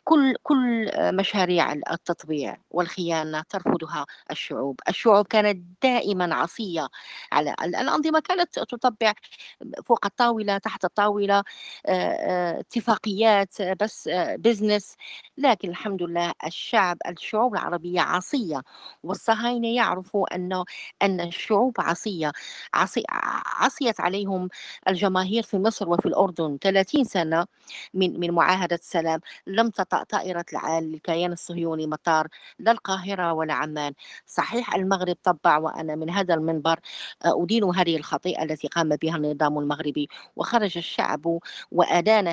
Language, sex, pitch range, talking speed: Arabic, female, 170-210 Hz, 110 wpm